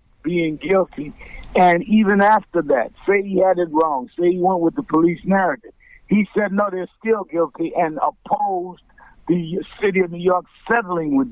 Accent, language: American, English